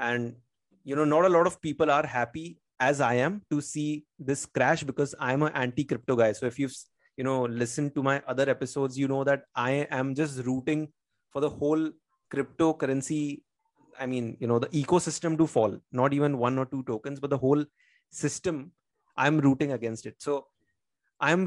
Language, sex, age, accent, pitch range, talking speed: English, male, 30-49, Indian, 125-150 Hz, 185 wpm